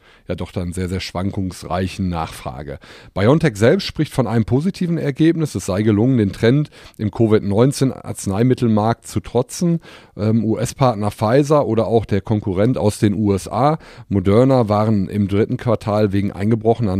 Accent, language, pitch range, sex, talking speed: German, German, 100-125 Hz, male, 145 wpm